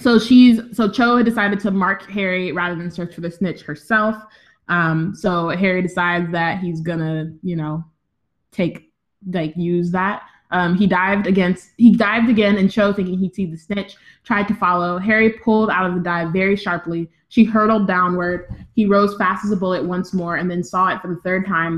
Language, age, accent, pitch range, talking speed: English, 20-39, American, 175-215 Hz, 200 wpm